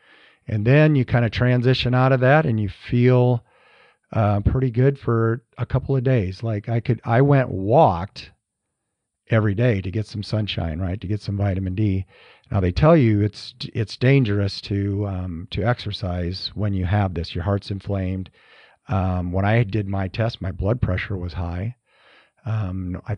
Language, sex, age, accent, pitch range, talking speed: English, male, 50-69, American, 95-120 Hz, 180 wpm